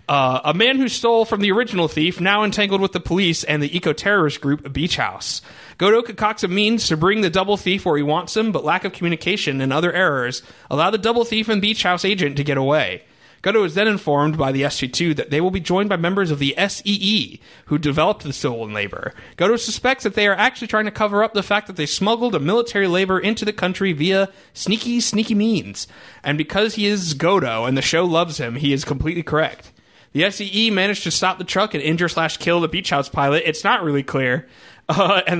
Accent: American